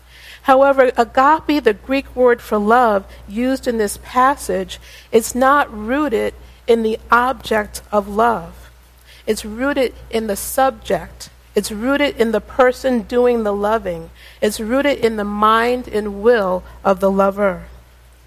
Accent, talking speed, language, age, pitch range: American, 140 wpm, English, 50-69, 205-255 Hz